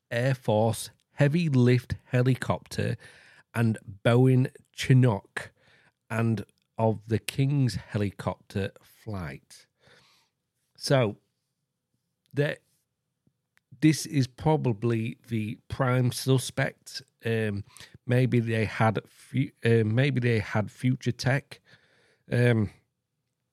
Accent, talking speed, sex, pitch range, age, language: British, 85 wpm, male, 110-135 Hz, 40-59, English